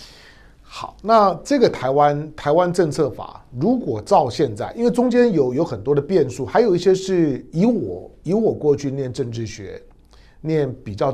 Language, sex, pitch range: Chinese, male, 110-150 Hz